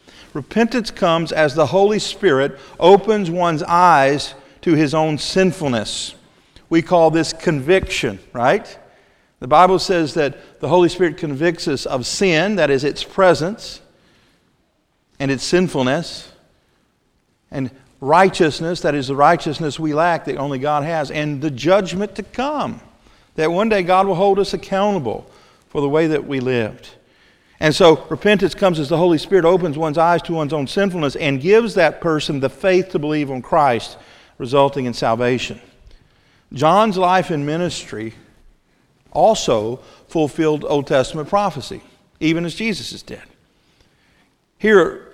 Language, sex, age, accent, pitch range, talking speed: English, male, 50-69, American, 140-185 Hz, 145 wpm